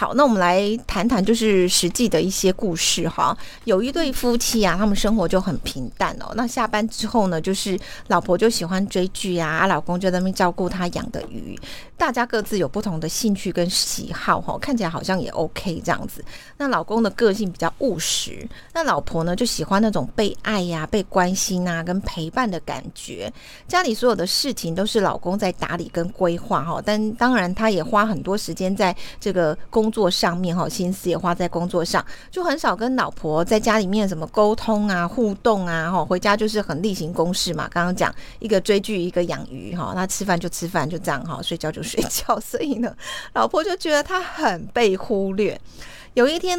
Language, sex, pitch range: Chinese, female, 175-225 Hz